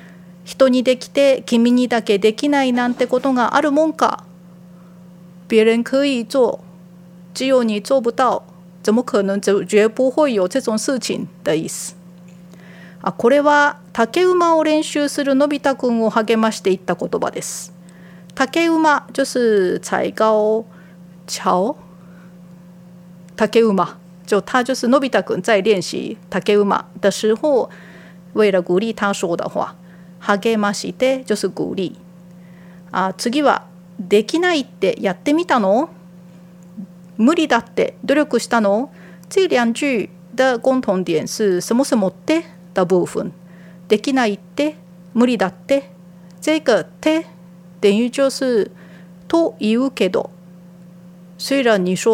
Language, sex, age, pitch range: Japanese, female, 40-59, 180-250 Hz